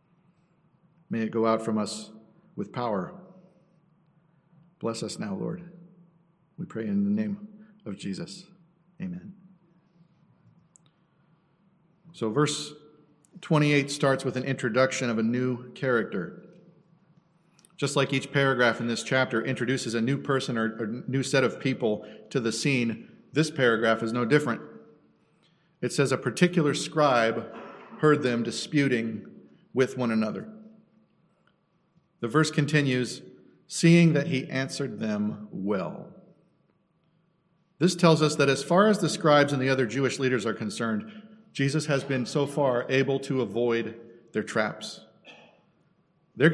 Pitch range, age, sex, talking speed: 130-175 Hz, 40-59, male, 135 wpm